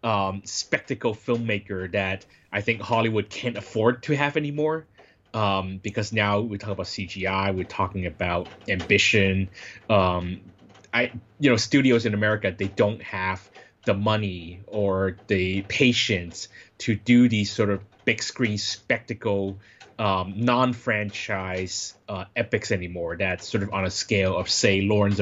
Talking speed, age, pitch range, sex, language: 145 wpm, 20-39, 95-120 Hz, male, English